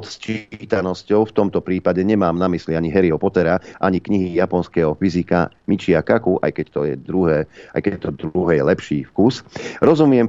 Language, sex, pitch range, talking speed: Slovak, male, 85-100 Hz, 165 wpm